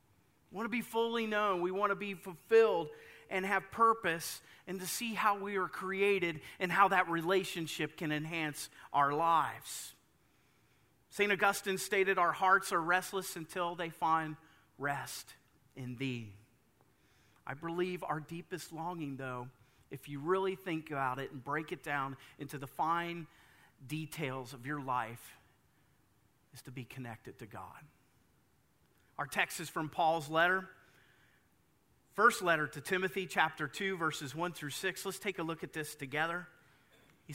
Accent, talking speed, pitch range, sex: American, 155 wpm, 150-195 Hz, male